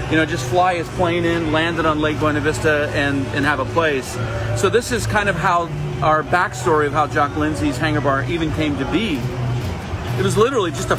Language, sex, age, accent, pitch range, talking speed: English, male, 40-59, American, 125-165 Hz, 225 wpm